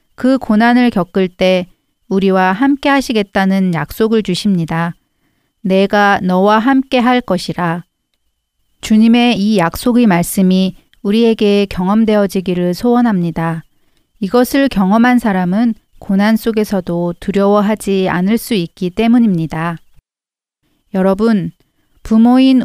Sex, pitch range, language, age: female, 180-230 Hz, Korean, 40-59